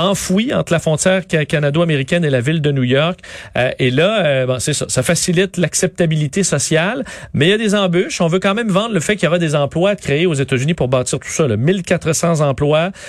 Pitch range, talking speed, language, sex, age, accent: 135-180 Hz, 235 wpm, French, male, 40-59, Canadian